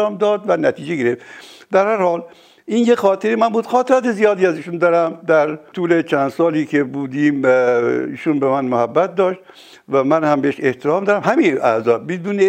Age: 60-79